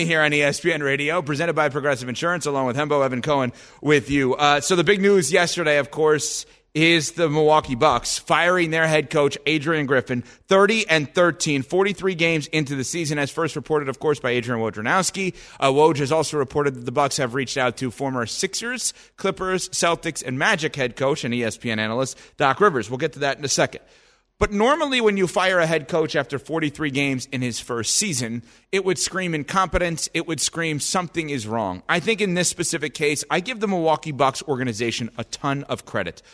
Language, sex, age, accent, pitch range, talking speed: English, male, 30-49, American, 135-180 Hz, 200 wpm